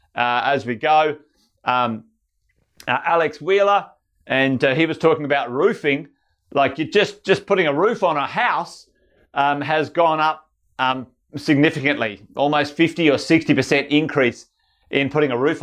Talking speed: 155 wpm